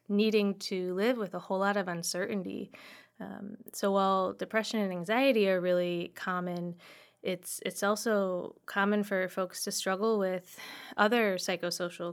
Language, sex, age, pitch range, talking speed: English, female, 20-39, 180-200 Hz, 145 wpm